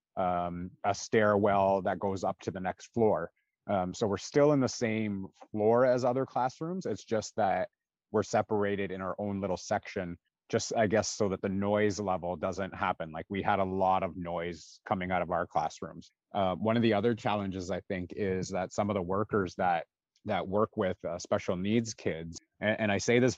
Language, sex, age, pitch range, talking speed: English, male, 30-49, 95-110 Hz, 205 wpm